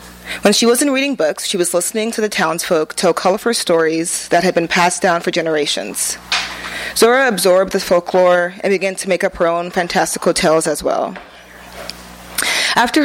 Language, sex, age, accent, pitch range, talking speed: English, female, 20-39, American, 170-205 Hz, 170 wpm